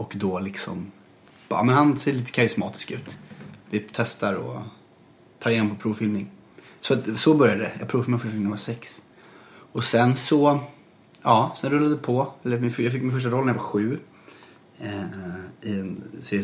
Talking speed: 170 wpm